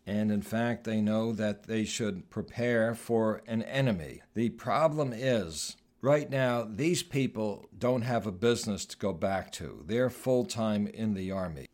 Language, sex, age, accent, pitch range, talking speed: English, male, 60-79, American, 100-120 Hz, 165 wpm